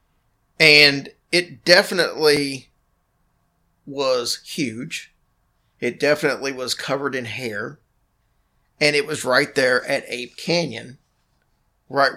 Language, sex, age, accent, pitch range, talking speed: English, male, 40-59, American, 125-155 Hz, 100 wpm